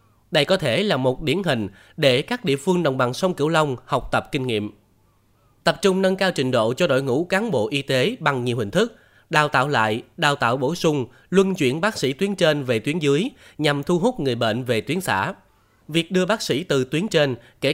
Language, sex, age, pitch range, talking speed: Vietnamese, male, 20-39, 120-175 Hz, 235 wpm